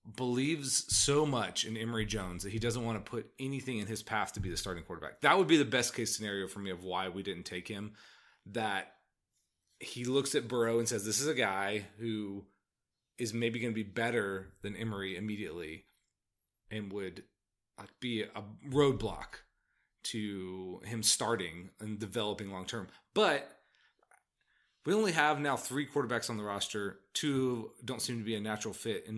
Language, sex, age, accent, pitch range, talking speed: English, male, 30-49, American, 100-120 Hz, 180 wpm